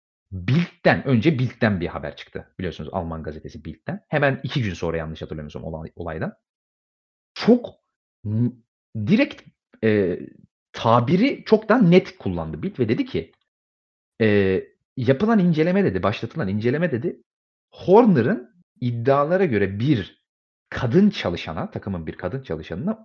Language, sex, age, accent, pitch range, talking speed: Turkish, male, 40-59, native, 85-140 Hz, 125 wpm